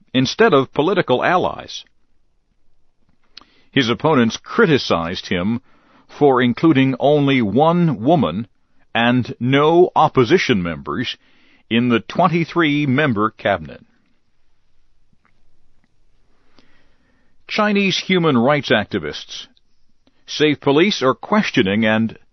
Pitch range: 125-170 Hz